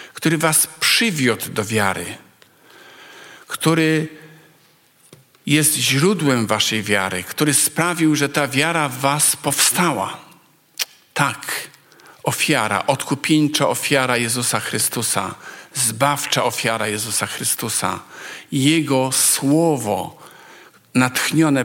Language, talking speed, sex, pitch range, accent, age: Polish, 85 wpm, male, 110-145 Hz, native, 50-69